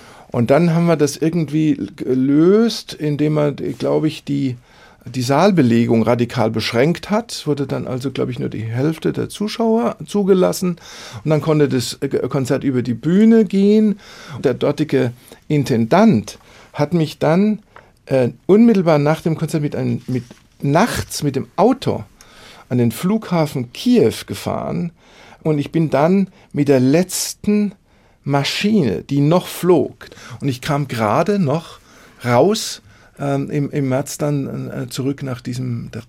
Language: German